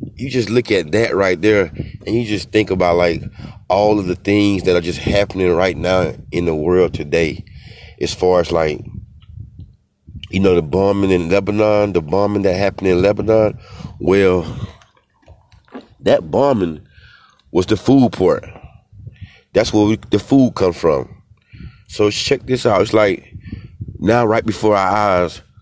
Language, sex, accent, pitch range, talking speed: English, male, American, 90-110 Hz, 155 wpm